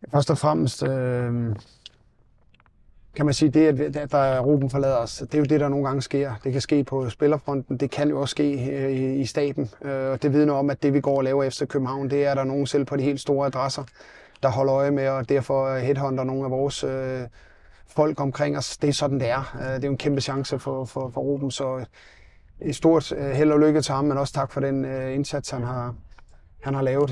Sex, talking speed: male, 240 wpm